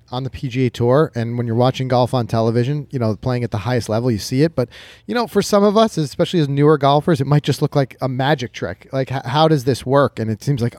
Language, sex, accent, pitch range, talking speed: English, male, American, 115-150 Hz, 275 wpm